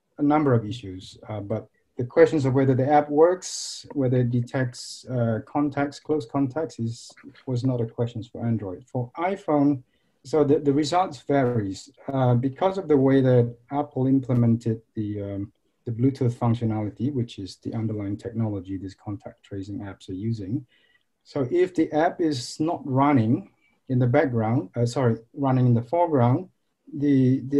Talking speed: 165 wpm